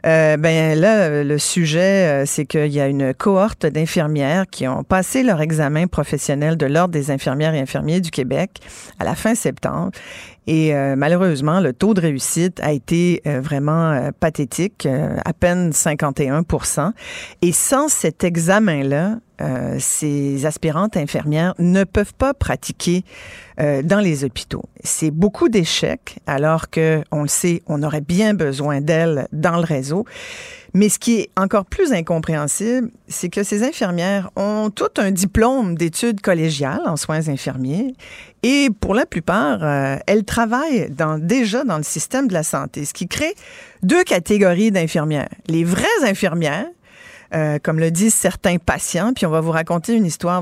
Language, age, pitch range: French, 40-59, 150-205 Hz